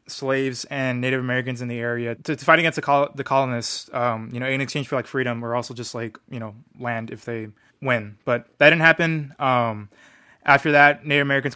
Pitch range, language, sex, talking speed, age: 125-140 Hz, English, male, 215 wpm, 20-39